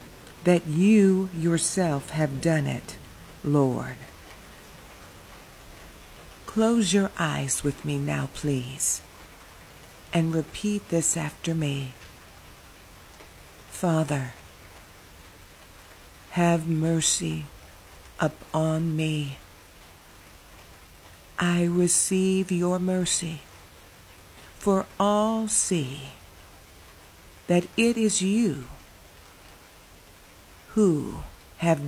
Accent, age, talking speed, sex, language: American, 50-69, 70 wpm, female, English